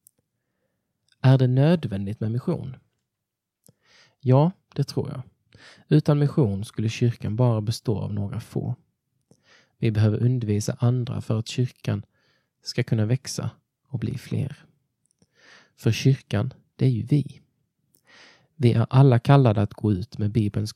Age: 20-39